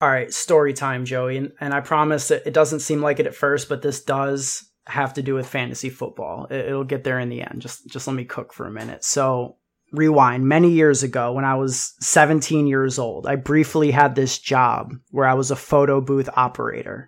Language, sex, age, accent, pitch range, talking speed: English, male, 20-39, American, 130-145 Hz, 220 wpm